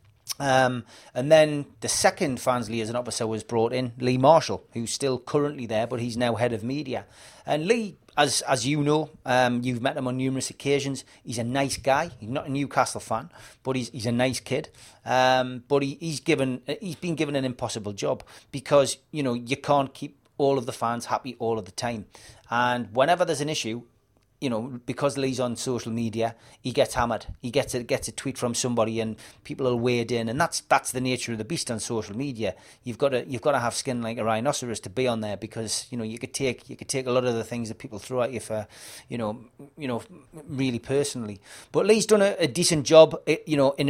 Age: 30-49